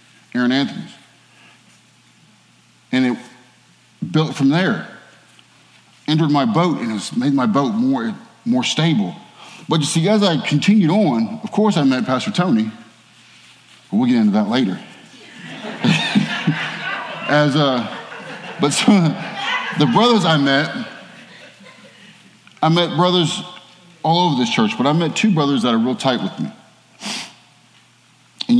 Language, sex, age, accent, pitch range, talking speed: English, male, 30-49, American, 145-220 Hz, 135 wpm